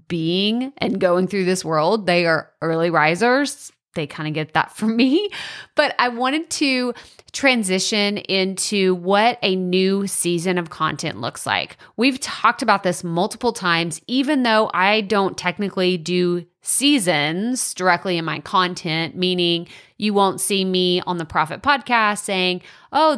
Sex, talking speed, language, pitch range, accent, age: female, 155 wpm, English, 175-230 Hz, American, 30-49